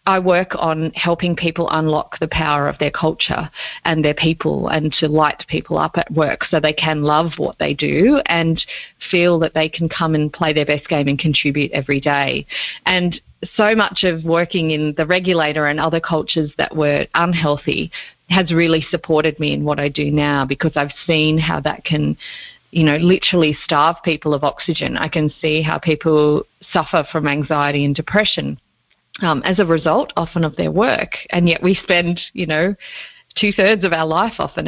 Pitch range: 150-175 Hz